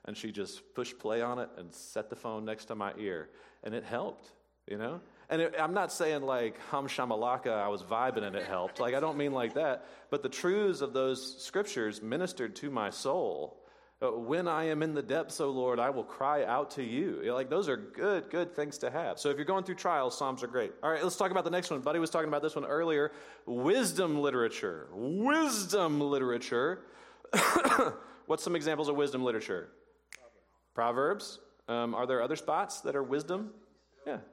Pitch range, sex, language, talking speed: 125-195 Hz, male, English, 205 wpm